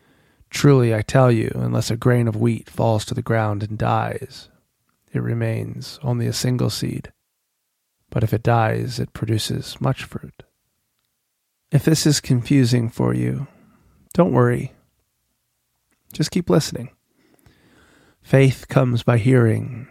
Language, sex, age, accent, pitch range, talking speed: English, male, 30-49, American, 115-135 Hz, 135 wpm